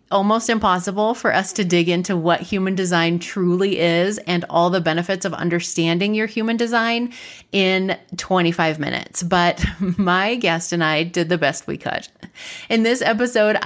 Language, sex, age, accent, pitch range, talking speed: English, female, 30-49, American, 170-225 Hz, 165 wpm